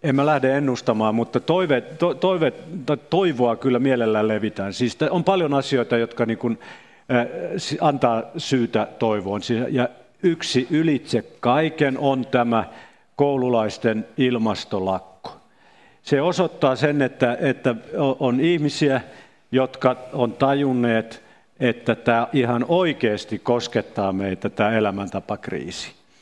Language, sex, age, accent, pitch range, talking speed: Finnish, male, 50-69, native, 115-145 Hz, 110 wpm